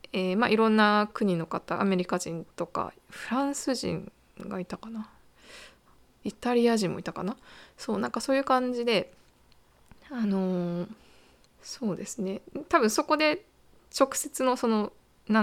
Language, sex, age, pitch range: Japanese, female, 20-39, 185-245 Hz